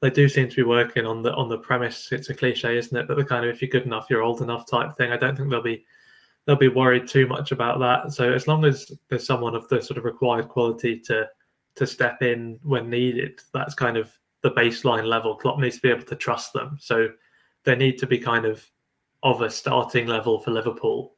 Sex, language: male, English